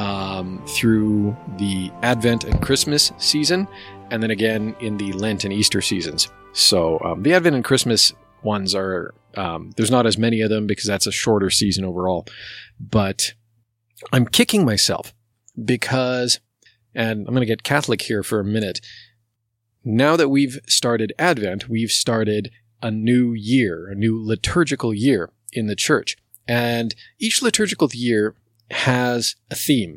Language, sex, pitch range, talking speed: English, male, 100-125 Hz, 150 wpm